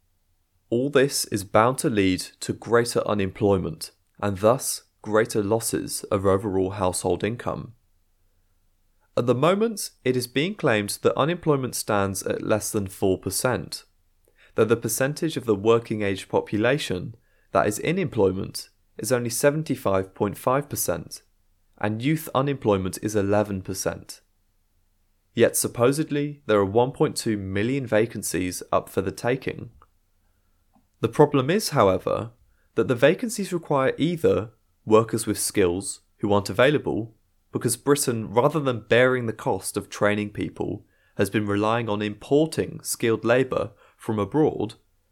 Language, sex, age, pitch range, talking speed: English, male, 30-49, 95-125 Hz, 130 wpm